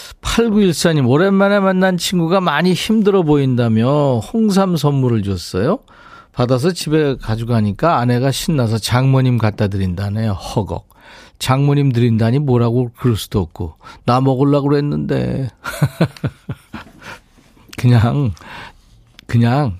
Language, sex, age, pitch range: Korean, male, 40-59, 115-165 Hz